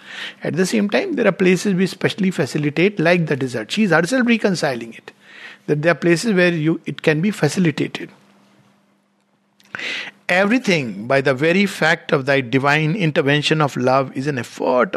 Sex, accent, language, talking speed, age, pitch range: male, Indian, English, 170 wpm, 60-79, 145-185 Hz